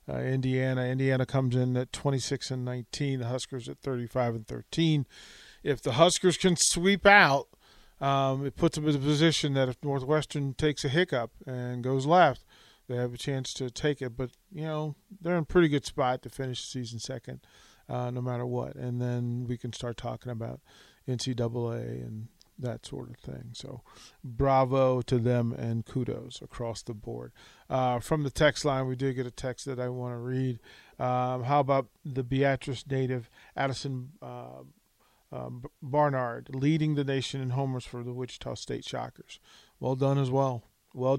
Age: 40-59